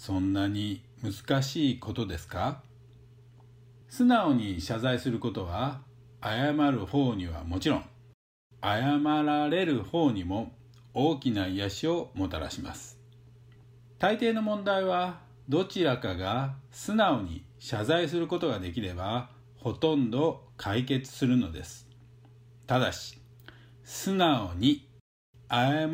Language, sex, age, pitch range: Japanese, male, 50-69, 120-150 Hz